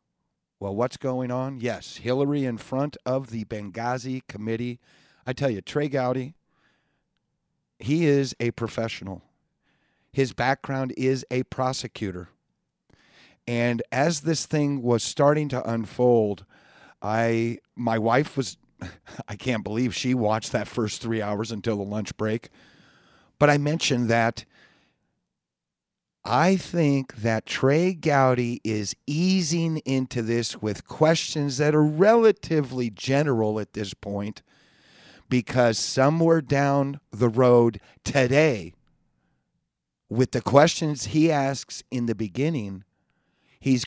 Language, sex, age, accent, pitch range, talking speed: English, male, 50-69, American, 115-140 Hz, 120 wpm